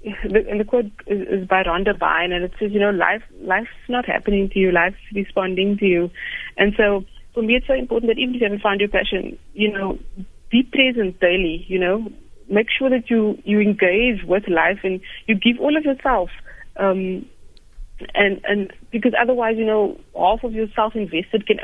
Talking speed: 195 wpm